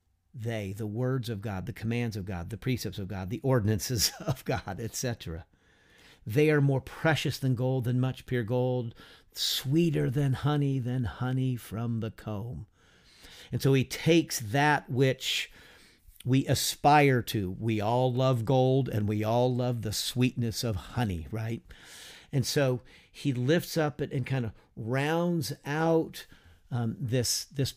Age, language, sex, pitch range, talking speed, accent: 50-69, English, male, 110-145 Hz, 155 wpm, American